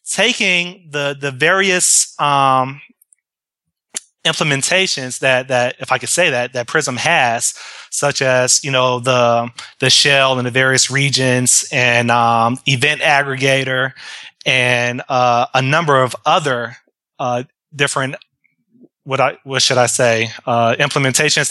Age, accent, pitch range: 20-39, American, 125-150 Hz